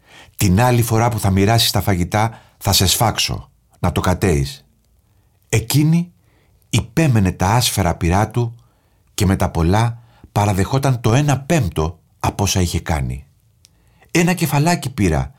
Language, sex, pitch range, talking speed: Greek, male, 90-120 Hz, 135 wpm